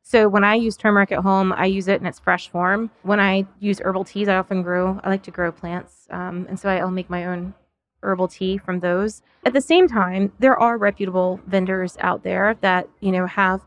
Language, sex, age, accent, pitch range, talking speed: English, female, 20-39, American, 190-220 Hz, 230 wpm